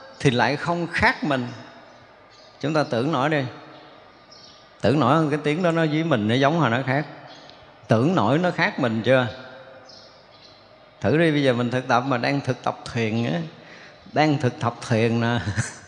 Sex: male